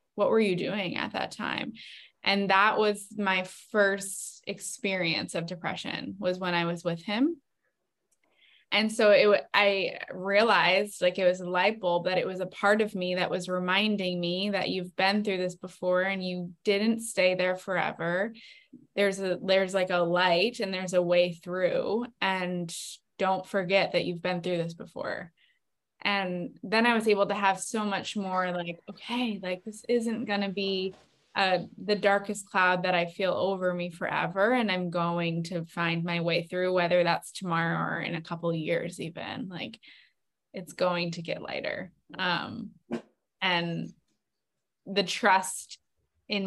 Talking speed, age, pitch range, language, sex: 170 wpm, 20-39, 175-200 Hz, English, female